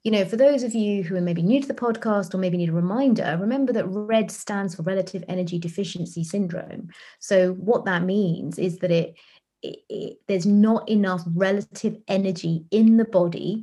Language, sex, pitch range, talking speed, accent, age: English, female, 175-205 Hz, 195 wpm, British, 30-49